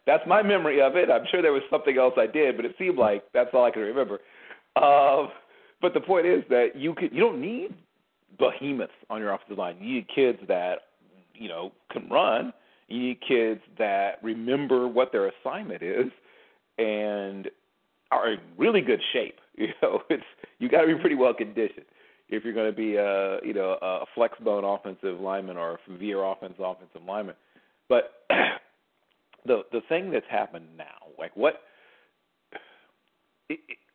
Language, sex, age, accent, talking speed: English, male, 40-59, American, 175 wpm